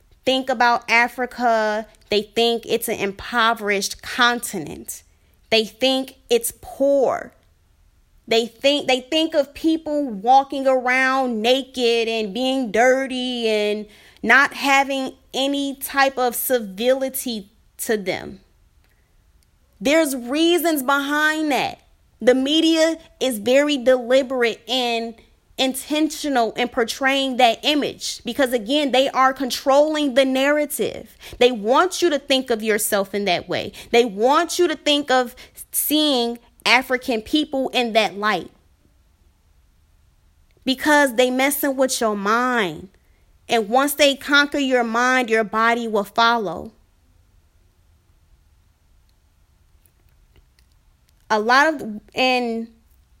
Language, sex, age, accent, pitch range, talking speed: English, female, 20-39, American, 205-270 Hz, 110 wpm